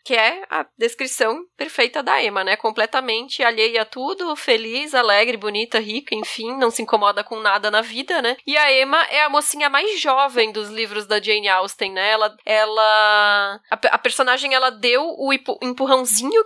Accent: Brazilian